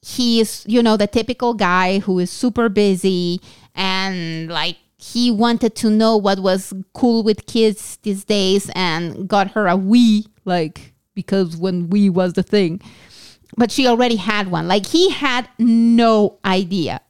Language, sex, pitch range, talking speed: English, female, 185-225 Hz, 160 wpm